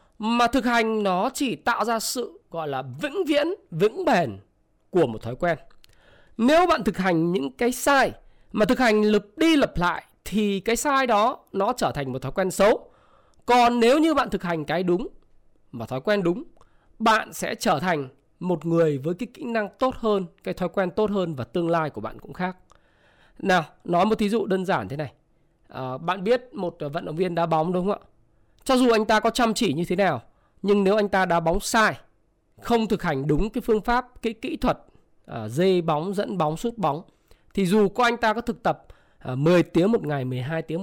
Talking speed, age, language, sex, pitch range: 215 wpm, 20-39, Vietnamese, male, 165-235 Hz